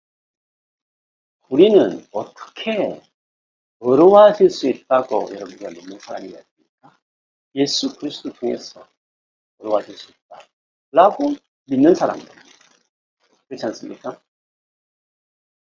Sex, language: male, Korean